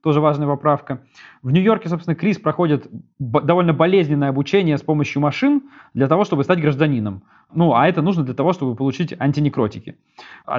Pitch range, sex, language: 140-175 Hz, male, Russian